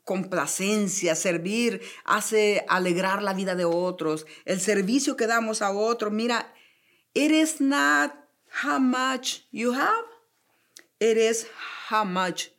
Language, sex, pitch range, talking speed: Spanish, female, 170-220 Hz, 125 wpm